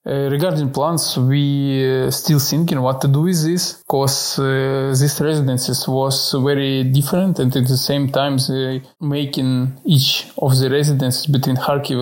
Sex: male